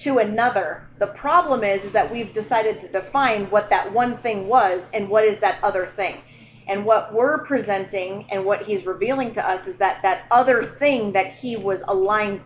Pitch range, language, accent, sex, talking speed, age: 200-265 Hz, English, American, female, 195 wpm, 30-49